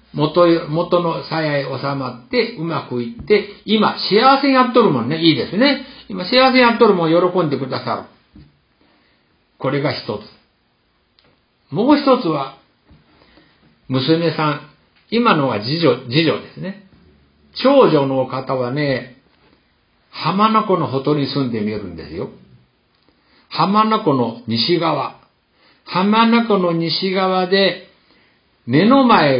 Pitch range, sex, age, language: 135-210 Hz, male, 60-79, Japanese